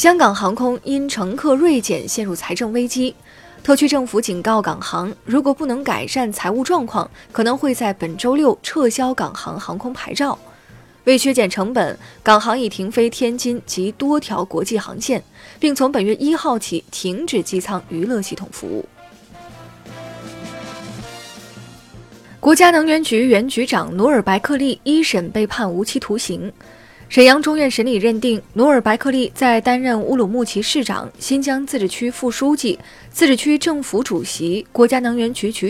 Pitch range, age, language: 195-270 Hz, 20-39, Chinese